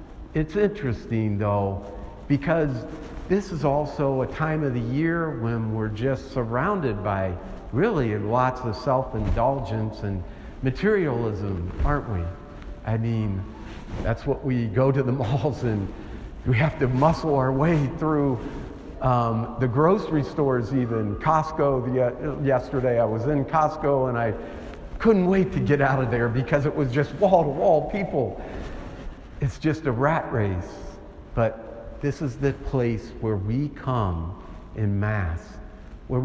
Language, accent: English, American